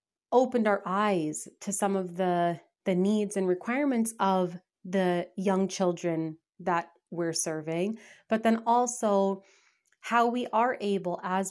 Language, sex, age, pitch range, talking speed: English, female, 30-49, 170-205 Hz, 135 wpm